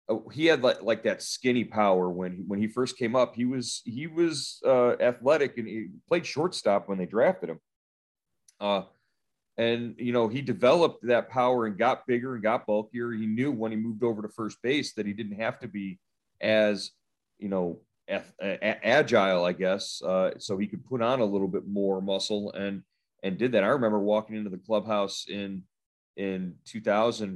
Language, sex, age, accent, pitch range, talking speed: English, male, 30-49, American, 95-120 Hz, 190 wpm